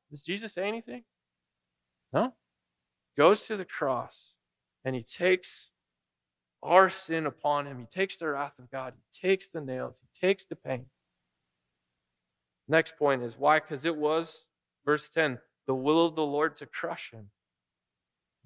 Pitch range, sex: 115-165 Hz, male